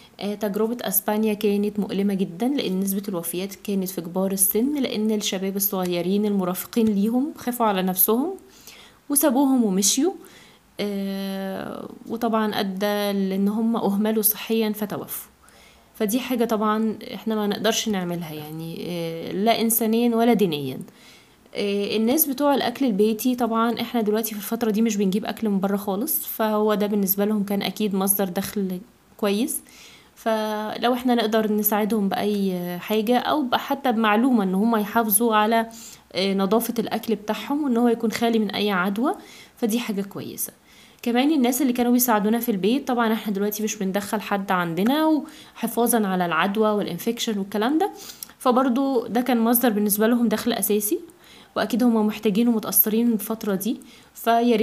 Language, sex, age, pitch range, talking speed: Arabic, female, 20-39, 200-235 Hz, 140 wpm